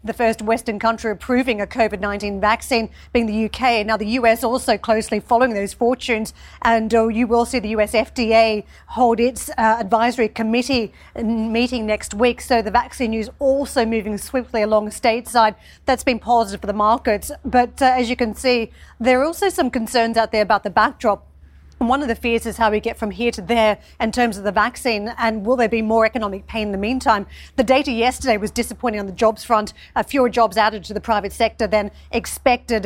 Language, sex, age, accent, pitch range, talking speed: English, female, 40-59, Australian, 215-245 Hz, 195 wpm